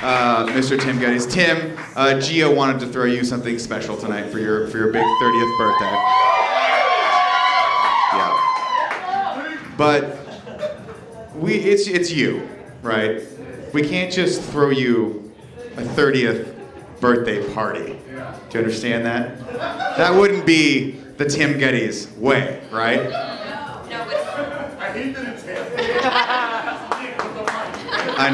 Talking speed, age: 105 wpm, 30-49